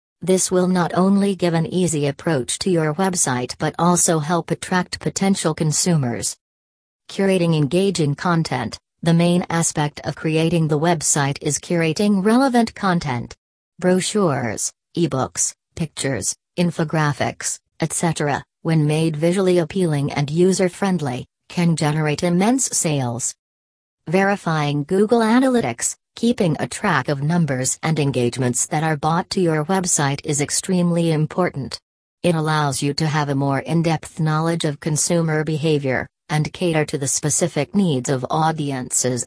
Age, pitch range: 40-59, 145-175 Hz